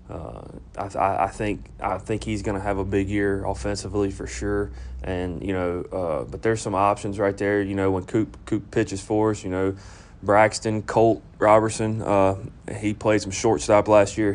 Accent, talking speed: American, 195 wpm